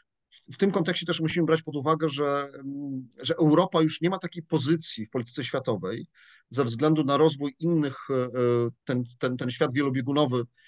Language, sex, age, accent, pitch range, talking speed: Polish, male, 40-59, native, 135-170 Hz, 165 wpm